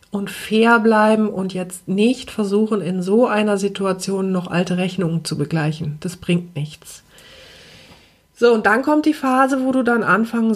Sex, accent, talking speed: female, German, 165 wpm